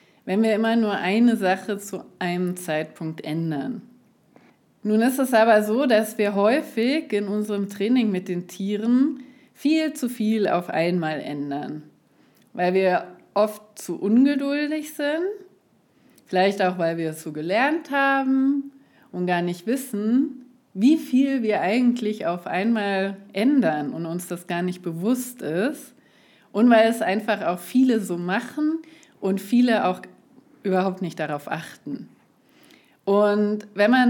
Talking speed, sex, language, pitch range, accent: 140 wpm, female, German, 180-245 Hz, German